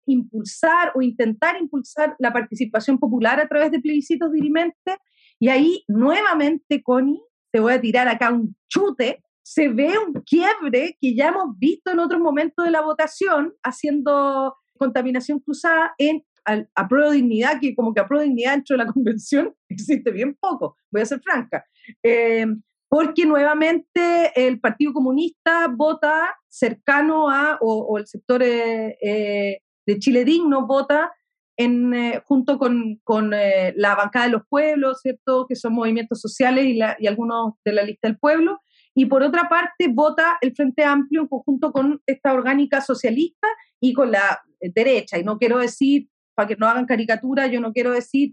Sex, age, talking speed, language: female, 40-59, 170 wpm, Spanish